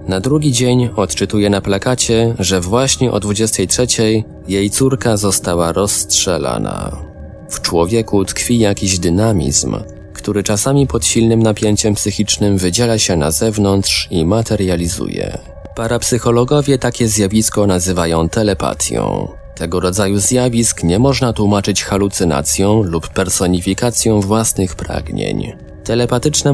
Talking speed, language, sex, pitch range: 110 wpm, Polish, male, 90-115 Hz